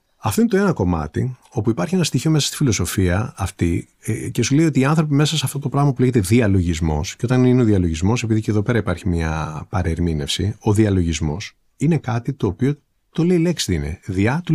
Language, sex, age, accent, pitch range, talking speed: Greek, male, 30-49, native, 95-155 Hz, 220 wpm